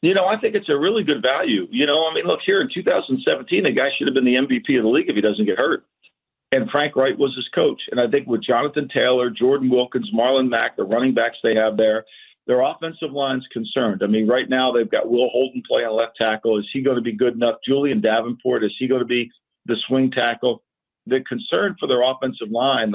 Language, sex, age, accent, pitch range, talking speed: English, male, 50-69, American, 115-135 Hz, 245 wpm